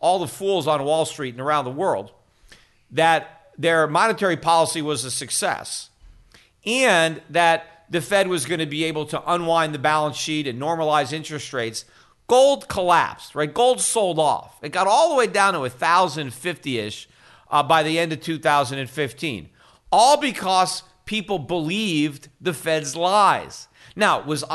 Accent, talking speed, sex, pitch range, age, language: American, 155 wpm, male, 150-210 Hz, 50-69, English